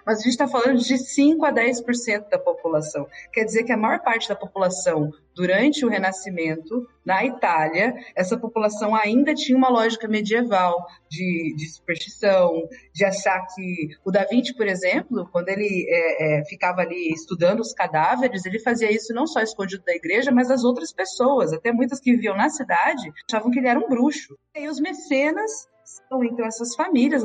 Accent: Brazilian